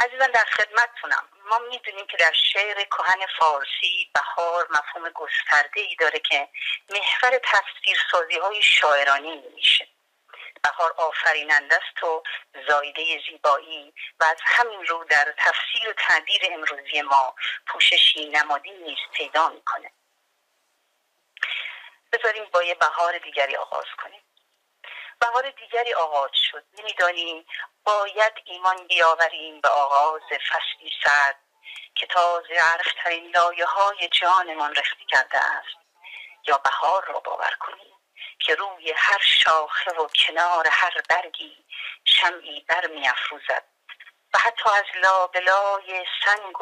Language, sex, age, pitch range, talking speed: Persian, female, 40-59, 160-215 Hz, 115 wpm